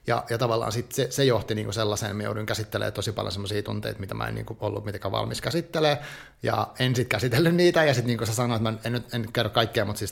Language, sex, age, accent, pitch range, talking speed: Finnish, male, 30-49, native, 105-120 Hz, 250 wpm